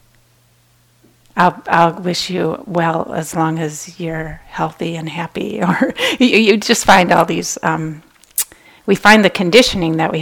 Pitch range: 165-195 Hz